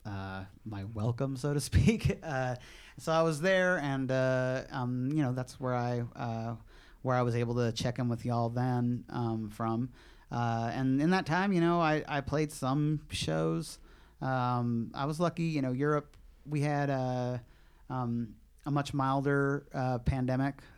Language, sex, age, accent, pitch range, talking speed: English, male, 30-49, American, 120-140 Hz, 175 wpm